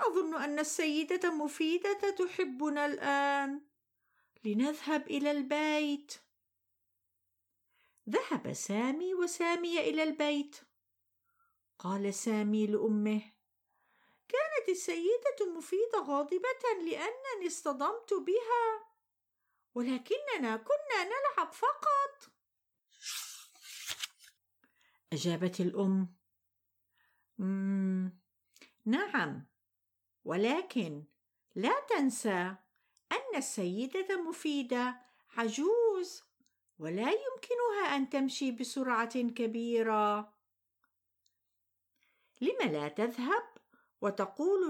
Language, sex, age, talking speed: Arabic, female, 50-69, 65 wpm